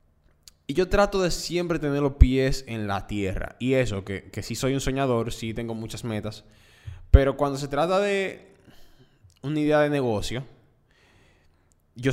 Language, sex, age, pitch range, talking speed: Spanish, male, 10-29, 110-145 Hz, 165 wpm